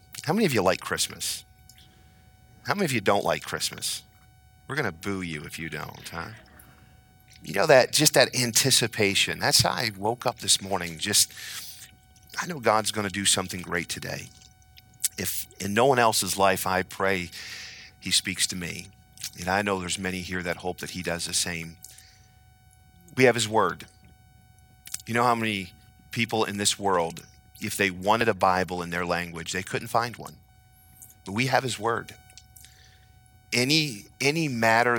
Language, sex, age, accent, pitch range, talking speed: English, male, 40-59, American, 95-110 Hz, 175 wpm